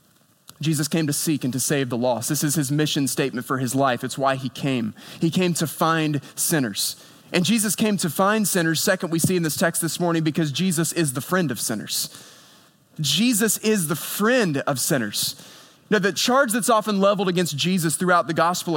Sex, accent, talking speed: male, American, 205 wpm